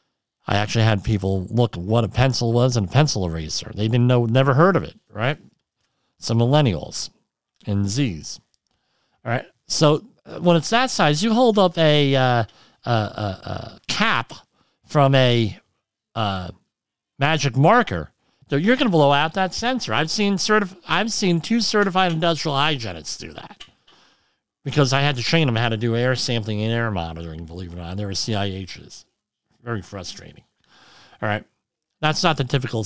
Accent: American